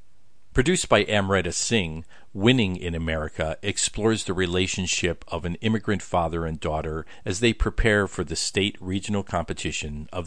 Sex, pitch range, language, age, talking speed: male, 80-105 Hz, English, 50-69, 145 wpm